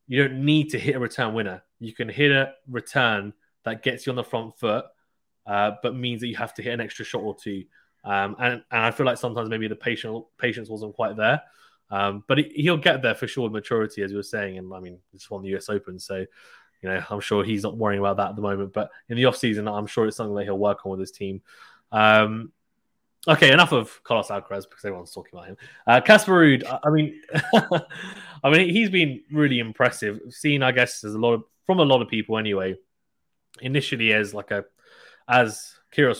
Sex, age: male, 20-39